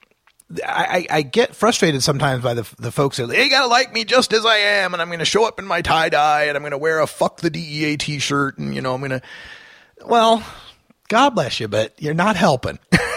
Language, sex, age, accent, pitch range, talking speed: English, male, 30-49, American, 110-180 Hz, 230 wpm